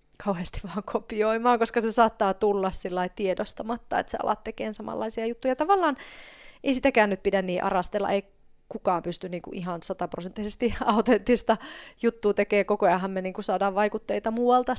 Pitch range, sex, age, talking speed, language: 190-230 Hz, female, 30-49, 155 wpm, Finnish